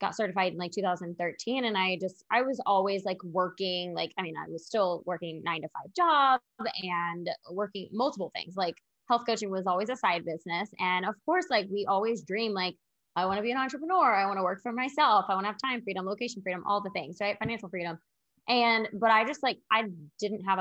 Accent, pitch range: American, 180-220 Hz